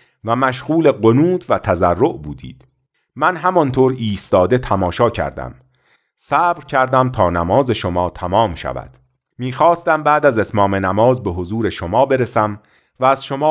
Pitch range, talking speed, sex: 95-145 Hz, 135 wpm, male